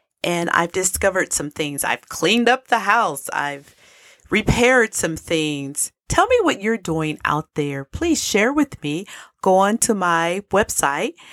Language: English